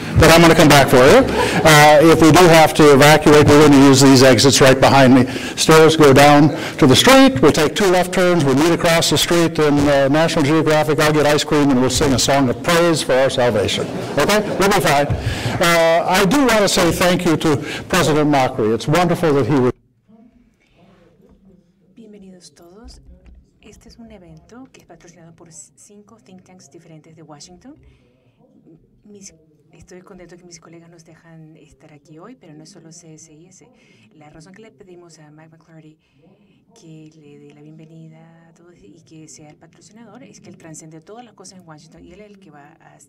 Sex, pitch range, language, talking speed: male, 150-180 Hz, English, 205 wpm